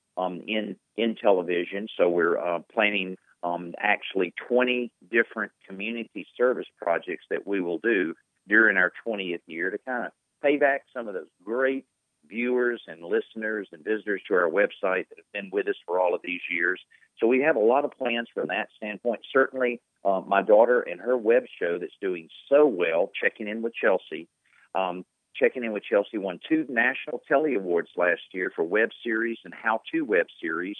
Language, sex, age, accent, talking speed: English, male, 50-69, American, 185 wpm